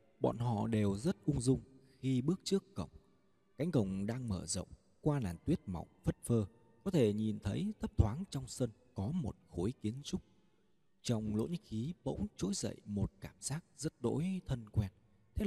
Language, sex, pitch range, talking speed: Vietnamese, male, 100-165 Hz, 190 wpm